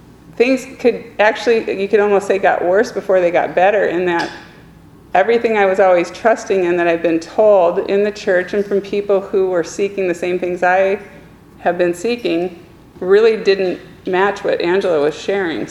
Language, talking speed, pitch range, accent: English, 185 wpm, 170-205 Hz, American